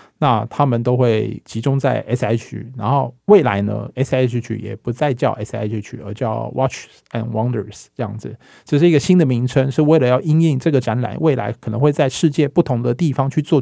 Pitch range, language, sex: 120-150 Hz, Chinese, male